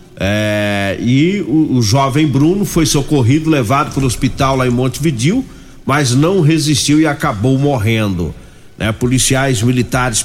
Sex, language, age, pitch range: male, Portuguese, 50-69, 115-145 Hz